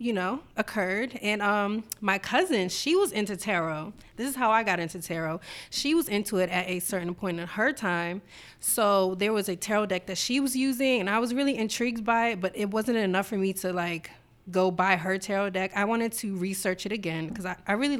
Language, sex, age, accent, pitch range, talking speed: English, female, 20-39, American, 180-220 Hz, 230 wpm